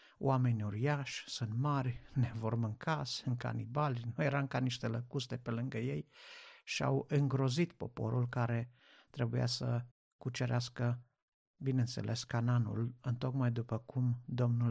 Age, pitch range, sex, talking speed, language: 50-69, 120-140 Hz, male, 130 wpm, Romanian